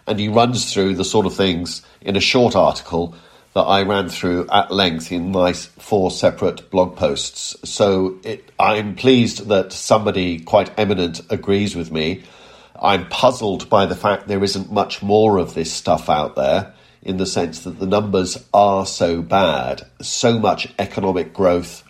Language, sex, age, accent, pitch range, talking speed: English, male, 50-69, British, 90-115 Hz, 165 wpm